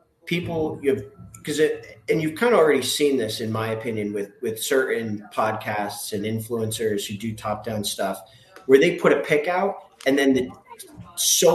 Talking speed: 180 wpm